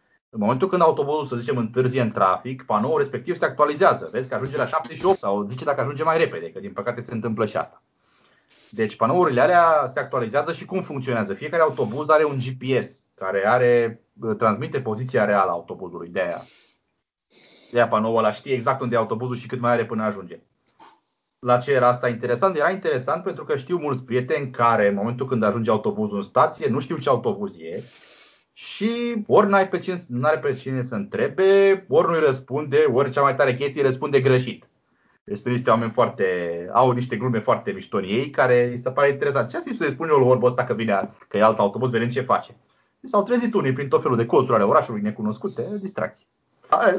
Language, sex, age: Romanian, male, 30-49